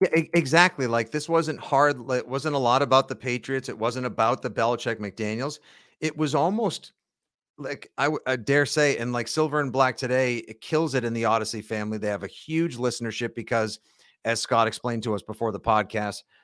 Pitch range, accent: 110-140 Hz, American